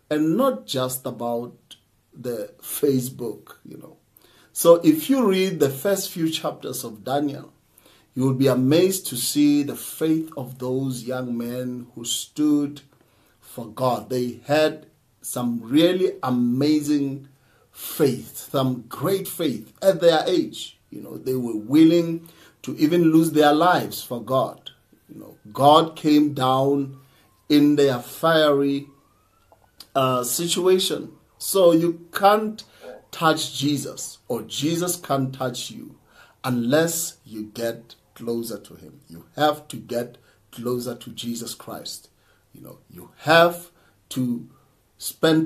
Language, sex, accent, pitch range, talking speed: English, male, South African, 125-160 Hz, 130 wpm